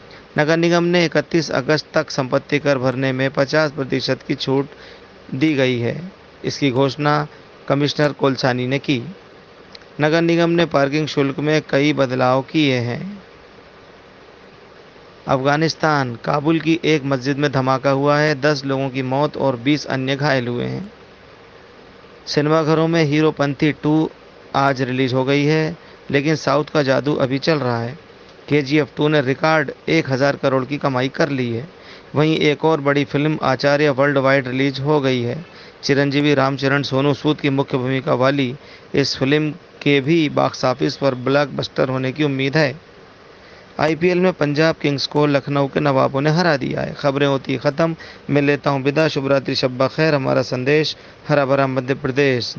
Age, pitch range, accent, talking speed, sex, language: 40-59, 135-150 Hz, native, 155 wpm, male, Hindi